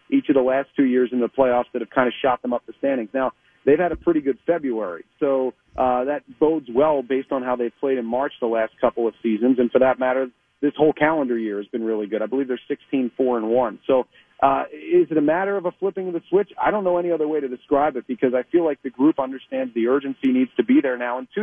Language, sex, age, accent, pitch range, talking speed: English, male, 40-59, American, 130-155 Hz, 265 wpm